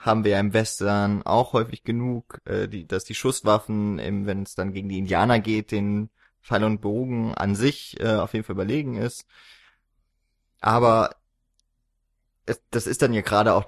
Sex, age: male, 20-39